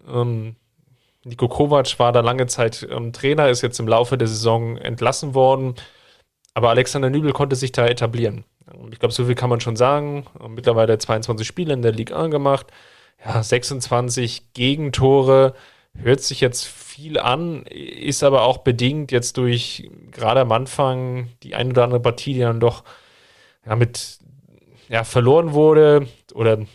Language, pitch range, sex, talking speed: German, 120-140 Hz, male, 160 wpm